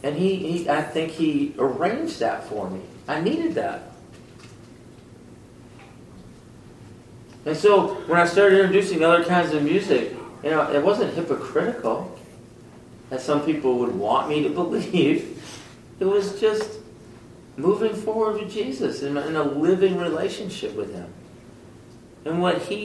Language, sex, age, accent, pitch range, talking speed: English, male, 40-59, American, 140-195 Hz, 140 wpm